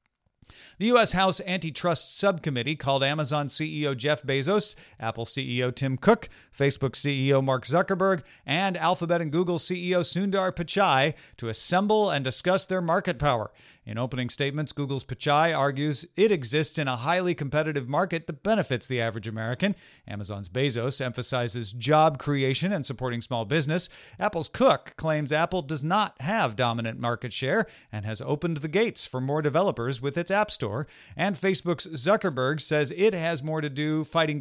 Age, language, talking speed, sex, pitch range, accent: 40-59, English, 160 wpm, male, 130-180 Hz, American